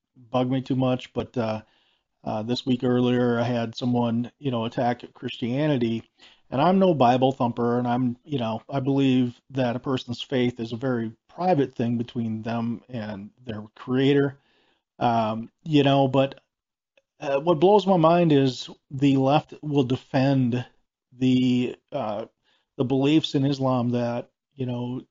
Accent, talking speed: American, 155 wpm